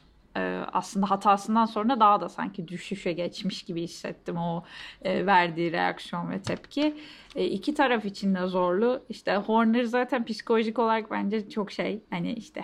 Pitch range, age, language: 185-225 Hz, 10-29, Turkish